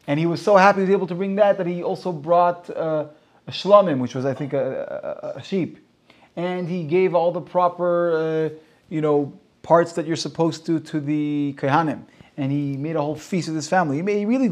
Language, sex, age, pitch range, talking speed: English, male, 30-49, 140-180 Hz, 225 wpm